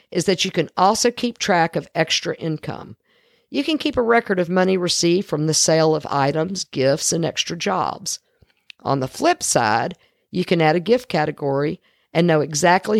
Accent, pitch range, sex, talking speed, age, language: American, 155-200 Hz, female, 185 wpm, 50-69, English